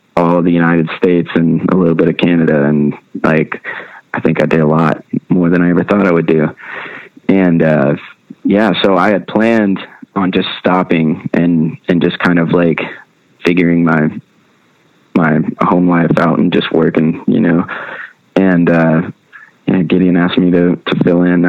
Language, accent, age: English, American, 20-39